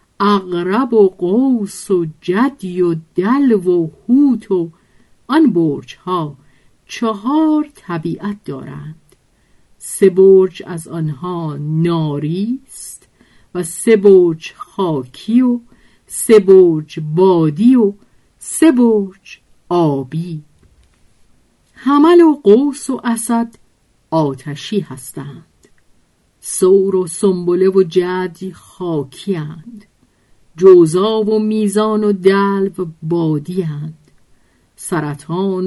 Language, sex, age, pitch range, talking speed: Persian, female, 50-69, 165-215 Hz, 95 wpm